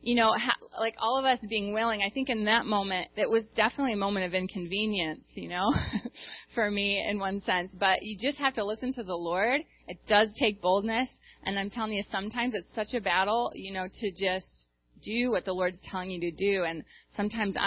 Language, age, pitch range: English, 20-39, 180-225 Hz